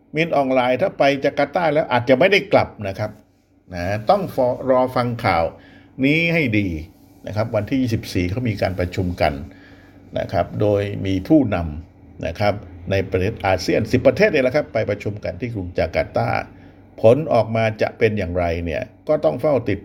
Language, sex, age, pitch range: Thai, male, 60-79, 95-145 Hz